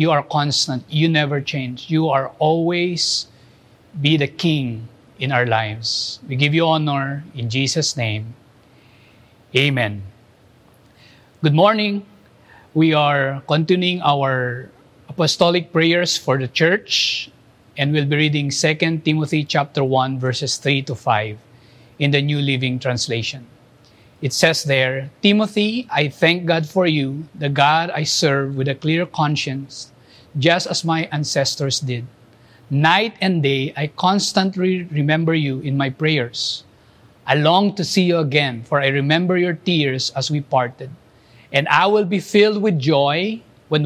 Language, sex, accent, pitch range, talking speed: English, male, Filipino, 130-165 Hz, 145 wpm